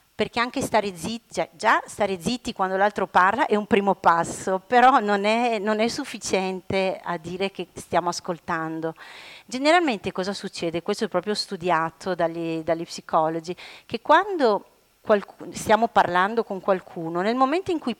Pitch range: 180-225 Hz